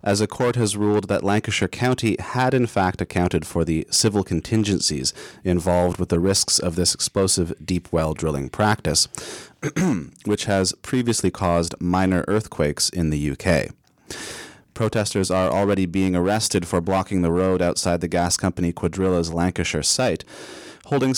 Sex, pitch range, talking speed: male, 85-105 Hz, 150 wpm